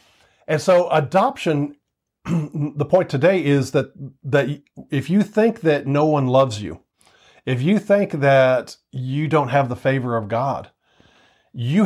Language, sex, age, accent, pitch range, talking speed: English, male, 50-69, American, 125-160 Hz, 145 wpm